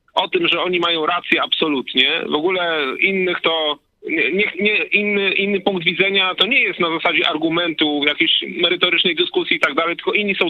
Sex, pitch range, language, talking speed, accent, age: male, 175-240 Hz, Polish, 185 wpm, native, 40-59